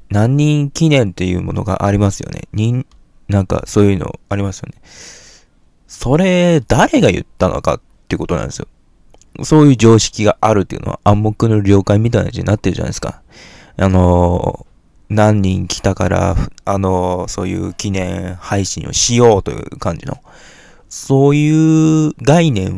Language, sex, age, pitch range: Japanese, male, 20-39, 95-135 Hz